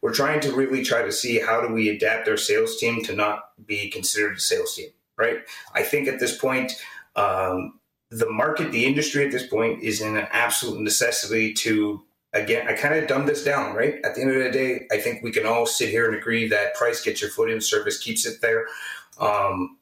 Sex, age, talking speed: male, 30-49, 225 wpm